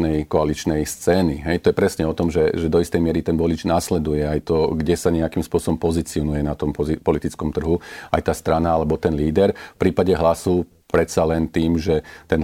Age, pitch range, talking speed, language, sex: 40-59, 80-90 Hz, 205 wpm, Slovak, male